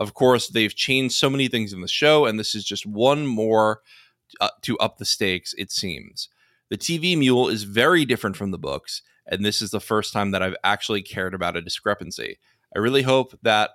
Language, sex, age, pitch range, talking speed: English, male, 20-39, 95-125 Hz, 215 wpm